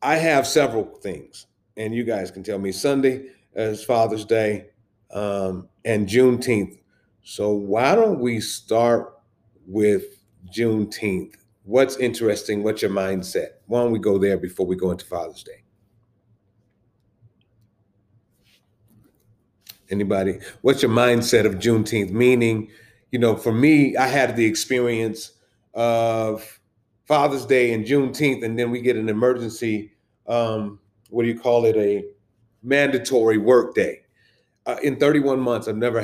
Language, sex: English, male